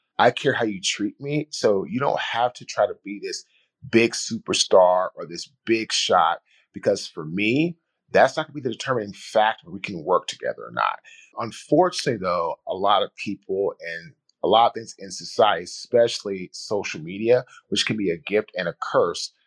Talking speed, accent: 195 wpm, American